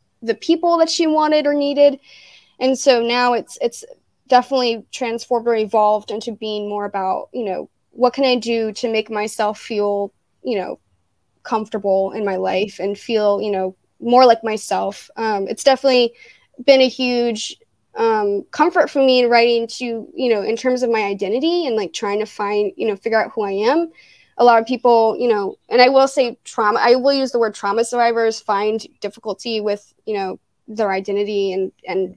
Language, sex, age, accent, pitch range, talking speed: English, female, 10-29, American, 205-260 Hz, 190 wpm